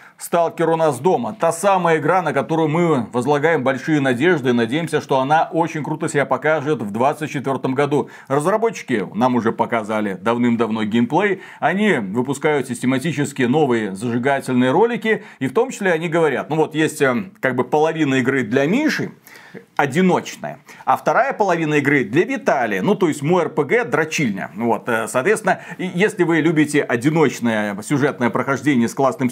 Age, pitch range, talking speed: 40-59, 130-185 Hz, 150 wpm